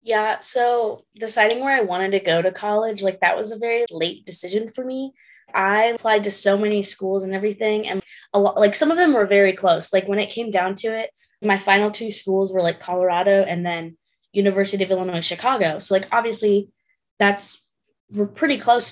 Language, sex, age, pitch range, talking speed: English, female, 20-39, 190-225 Hz, 200 wpm